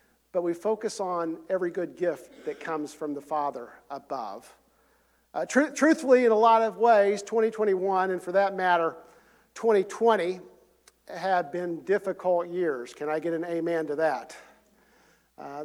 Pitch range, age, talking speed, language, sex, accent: 160-215 Hz, 50-69, 150 wpm, English, male, American